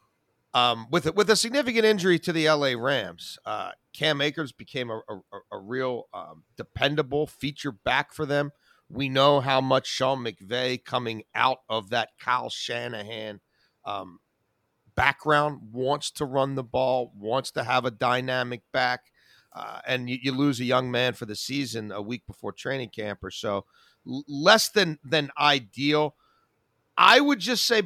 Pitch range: 125-170 Hz